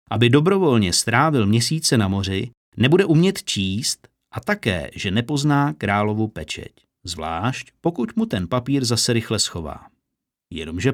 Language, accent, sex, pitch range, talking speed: Czech, native, male, 105-150 Hz, 130 wpm